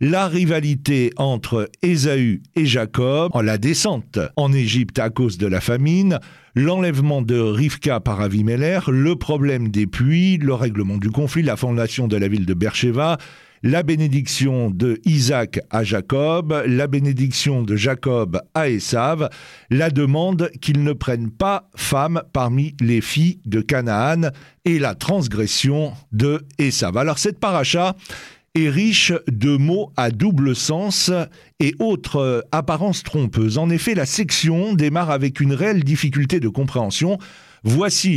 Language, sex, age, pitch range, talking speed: French, male, 50-69, 120-165 Hz, 140 wpm